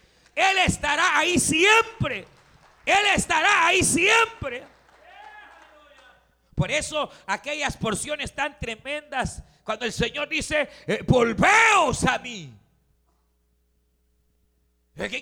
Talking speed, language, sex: 90 wpm, Spanish, male